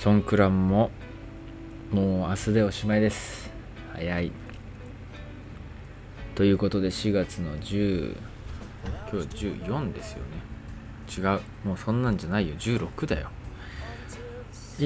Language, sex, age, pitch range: Japanese, male, 20-39, 95-120 Hz